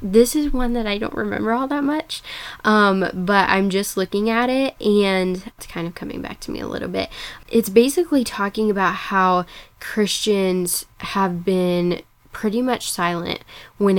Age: 10-29